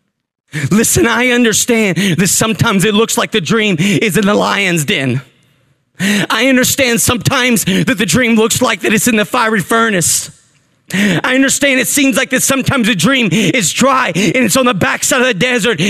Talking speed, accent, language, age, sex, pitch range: 180 wpm, American, English, 30-49, male, 220-345 Hz